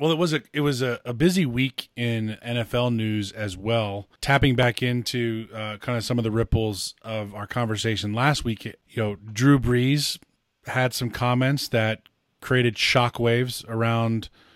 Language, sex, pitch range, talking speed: English, male, 110-125 Hz, 170 wpm